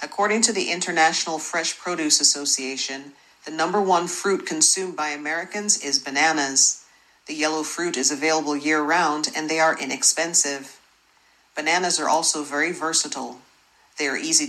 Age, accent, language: 40-59, American, Japanese